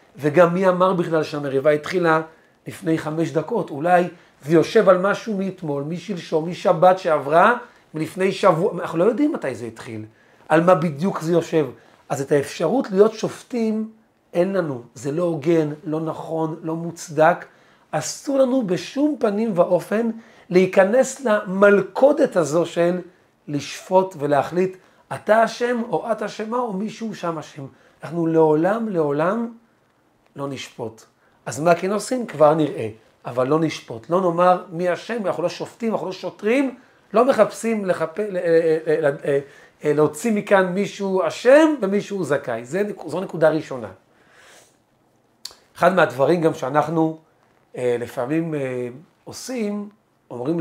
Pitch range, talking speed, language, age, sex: 155-205 Hz, 125 wpm, Hebrew, 40-59, male